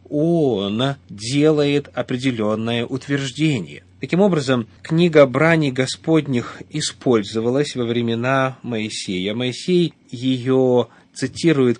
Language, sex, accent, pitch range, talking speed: Russian, male, native, 115-150 Hz, 80 wpm